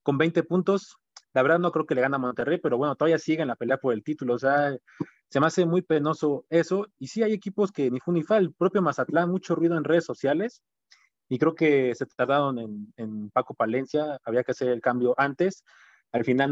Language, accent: Spanish, Mexican